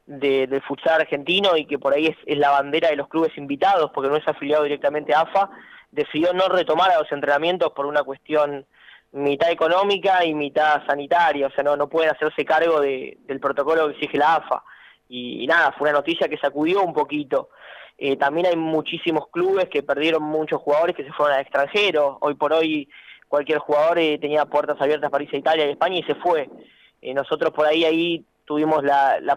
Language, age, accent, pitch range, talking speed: Spanish, 20-39, Argentinian, 145-170 Hz, 205 wpm